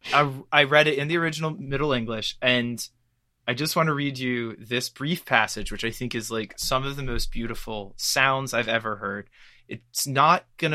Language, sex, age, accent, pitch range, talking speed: English, male, 20-39, American, 115-140 Hz, 195 wpm